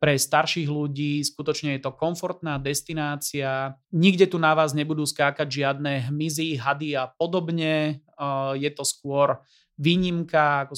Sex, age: male, 30-49